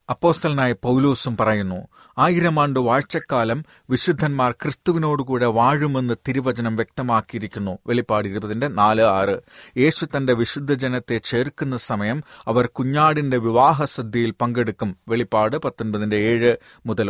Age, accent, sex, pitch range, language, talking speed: 30-49, native, male, 110-145 Hz, Malayalam, 100 wpm